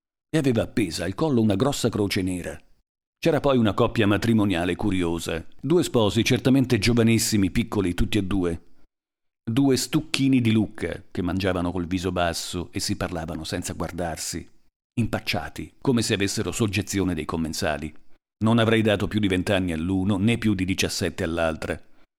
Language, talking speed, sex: Italian, 150 wpm, male